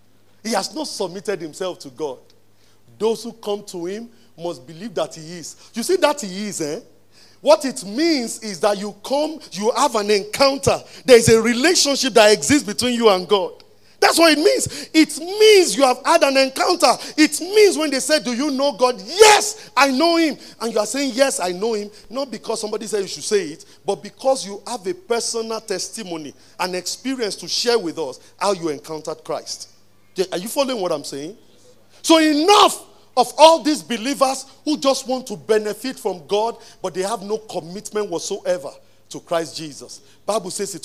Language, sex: English, male